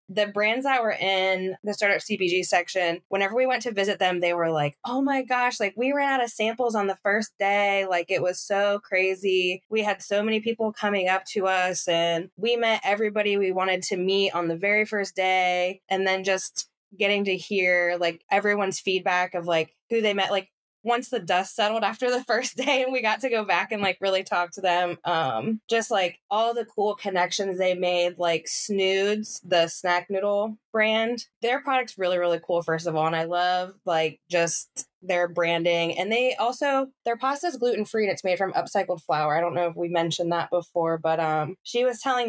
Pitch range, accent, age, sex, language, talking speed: 175-220 Hz, American, 20-39, female, English, 215 wpm